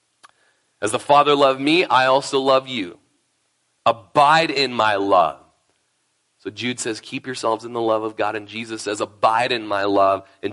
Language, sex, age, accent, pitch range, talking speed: English, male, 30-49, American, 130-185 Hz, 175 wpm